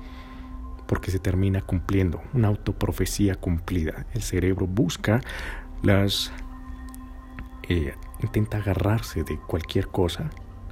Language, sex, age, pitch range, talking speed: Spanish, male, 40-59, 75-95 Hz, 95 wpm